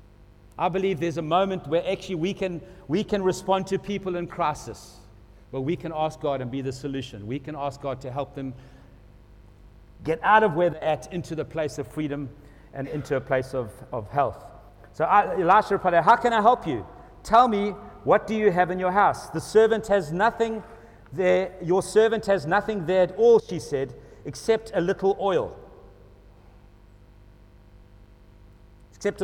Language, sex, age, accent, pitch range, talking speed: English, male, 60-79, South African, 125-195 Hz, 180 wpm